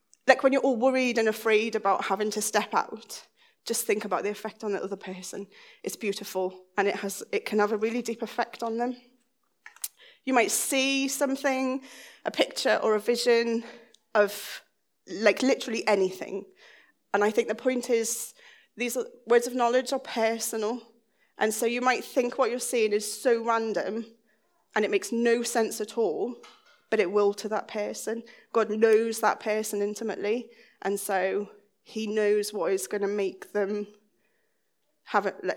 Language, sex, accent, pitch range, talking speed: English, female, British, 210-245 Hz, 170 wpm